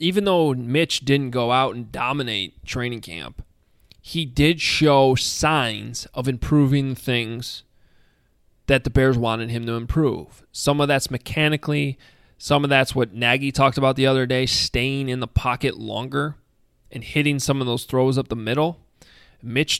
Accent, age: American, 20-39